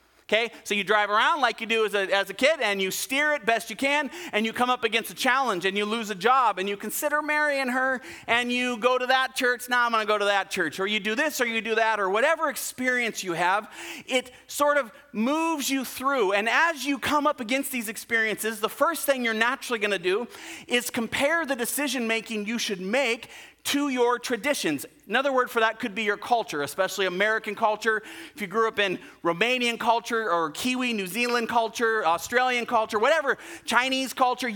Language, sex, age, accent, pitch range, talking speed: English, male, 30-49, American, 215-260 Hz, 220 wpm